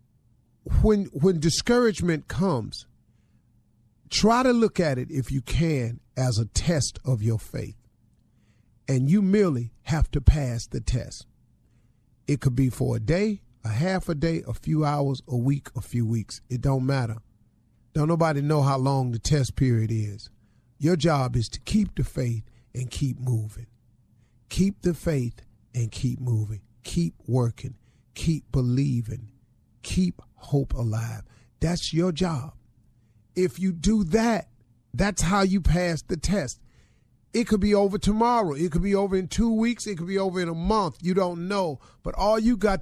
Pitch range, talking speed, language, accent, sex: 120-175 Hz, 165 wpm, English, American, male